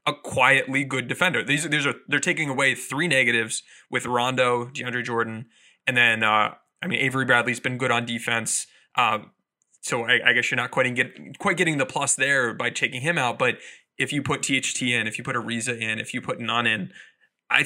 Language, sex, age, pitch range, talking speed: English, male, 20-39, 120-145 Hz, 210 wpm